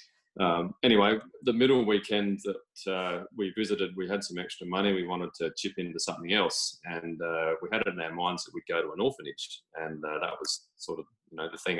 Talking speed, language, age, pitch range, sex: 230 wpm, English, 20-39, 85-105 Hz, male